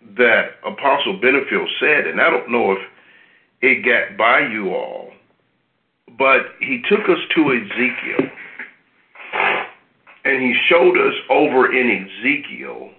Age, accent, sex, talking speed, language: 50-69, American, male, 125 wpm, English